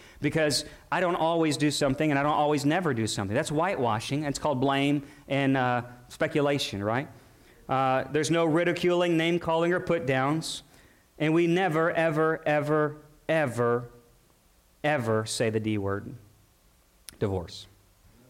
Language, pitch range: English, 115-150 Hz